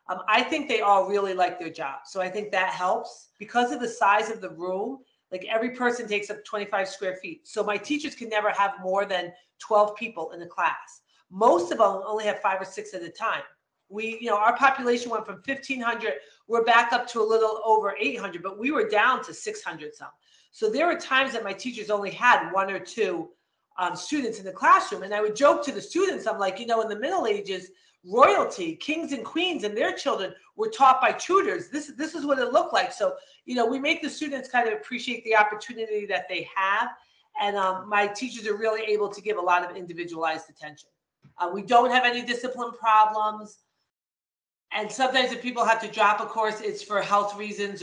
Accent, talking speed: American, 220 wpm